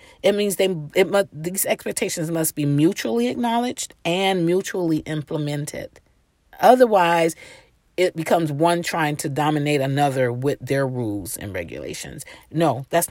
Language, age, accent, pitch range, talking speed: English, 40-59, American, 155-225 Hz, 135 wpm